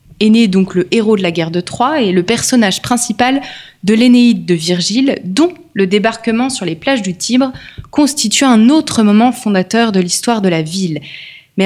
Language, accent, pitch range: French, French, 190-255 Hz